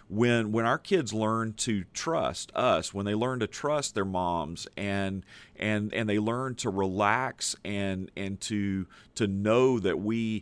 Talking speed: 165 wpm